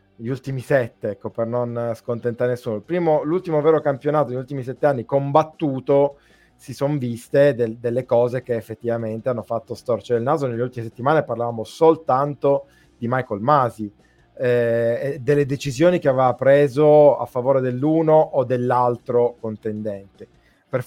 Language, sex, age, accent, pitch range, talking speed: Italian, male, 20-39, native, 120-165 Hz, 150 wpm